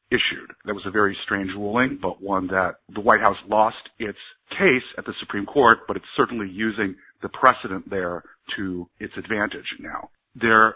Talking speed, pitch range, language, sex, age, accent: 180 wpm, 95-120 Hz, English, male, 50-69, American